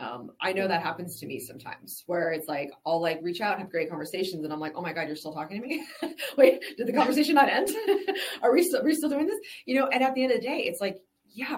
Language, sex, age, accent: English, female, 20-39, American